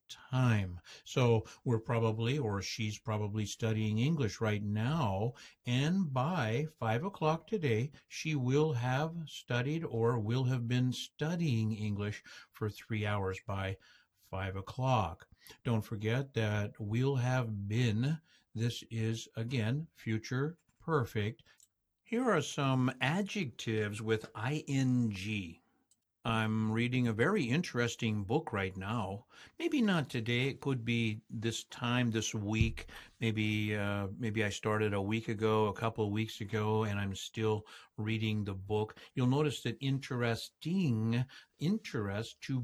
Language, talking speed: English, 130 wpm